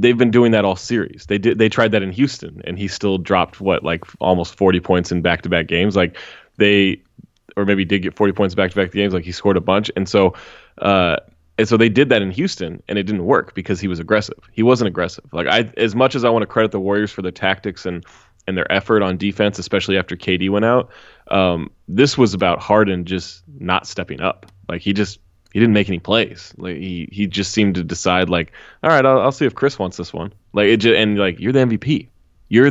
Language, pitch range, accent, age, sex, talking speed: English, 95-115 Hz, American, 20-39, male, 240 wpm